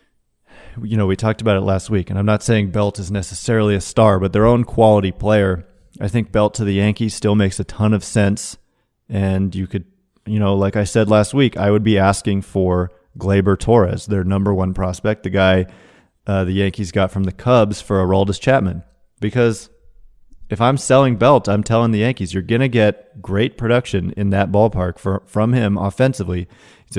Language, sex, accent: English, male, American